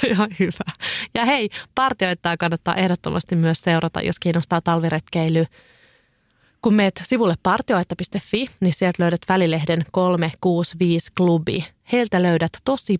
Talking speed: 115 wpm